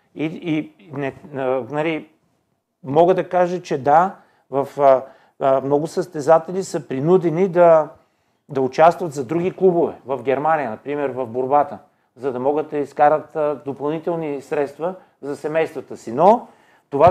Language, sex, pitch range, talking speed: Bulgarian, male, 145-185 Hz, 135 wpm